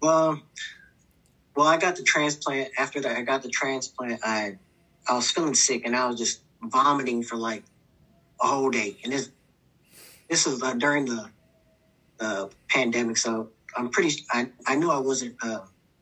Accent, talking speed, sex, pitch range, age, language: American, 170 wpm, male, 115-135 Hz, 20-39, English